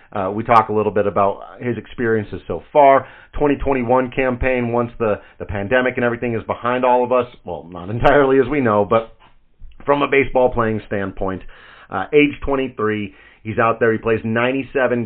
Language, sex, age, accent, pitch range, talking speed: English, male, 40-59, American, 100-130 Hz, 180 wpm